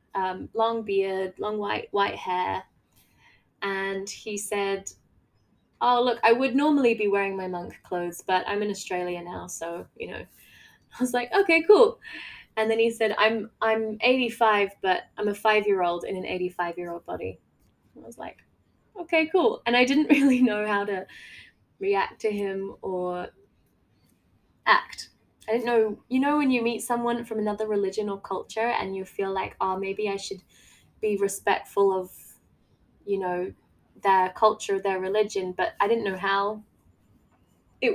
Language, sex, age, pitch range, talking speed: English, female, 10-29, 190-235 Hz, 165 wpm